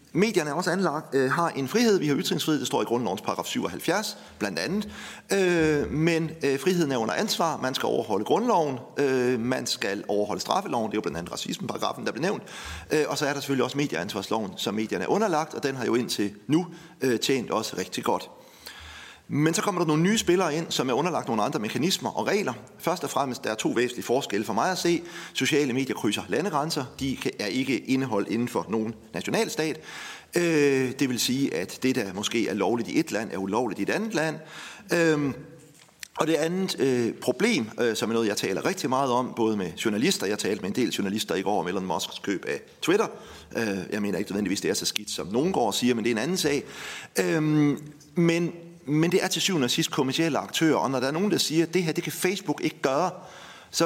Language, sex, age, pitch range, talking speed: Danish, male, 40-59, 130-170 Hz, 220 wpm